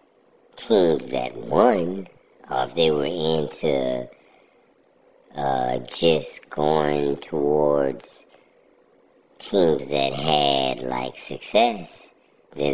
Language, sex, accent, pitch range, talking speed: English, male, American, 70-95 Hz, 85 wpm